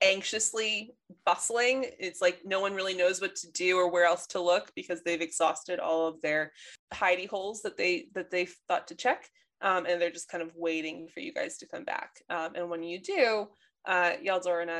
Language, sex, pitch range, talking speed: English, female, 170-240 Hz, 210 wpm